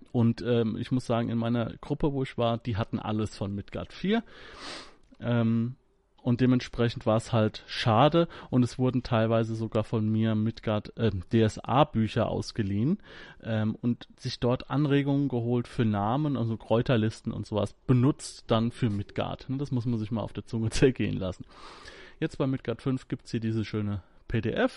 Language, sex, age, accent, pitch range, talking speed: German, male, 30-49, German, 110-130 Hz, 170 wpm